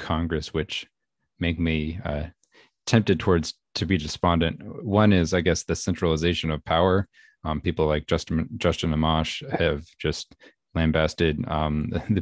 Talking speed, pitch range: 140 wpm, 80-95 Hz